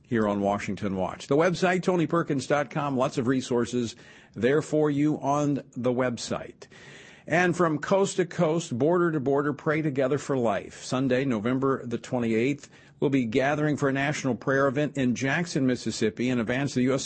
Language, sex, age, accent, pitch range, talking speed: English, male, 50-69, American, 115-145 Hz, 170 wpm